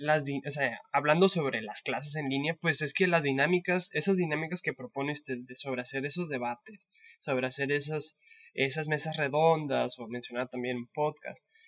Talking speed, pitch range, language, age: 175 wpm, 135-170 Hz, Spanish, 20-39